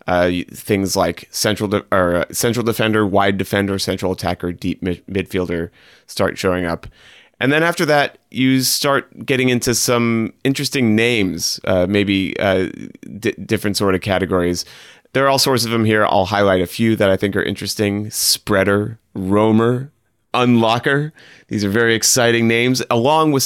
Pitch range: 90-115 Hz